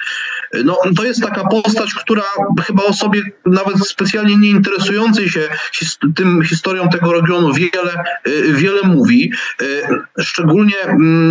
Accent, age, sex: native, 30-49, male